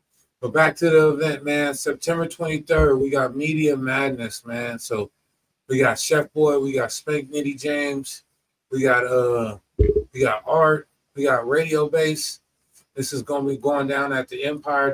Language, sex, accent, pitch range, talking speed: English, male, American, 130-150 Hz, 170 wpm